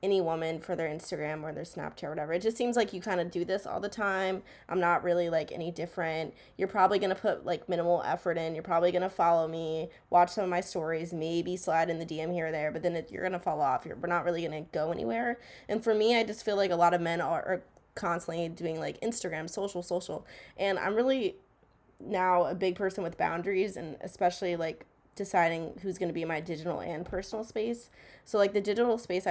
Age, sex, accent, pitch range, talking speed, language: 20-39, female, American, 165-195 Hz, 240 wpm, English